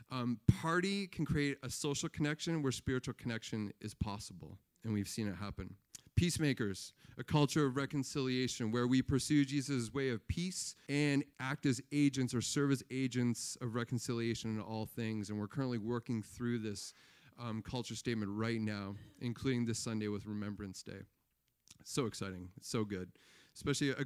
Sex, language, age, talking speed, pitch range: male, English, 40-59, 160 wpm, 115-140 Hz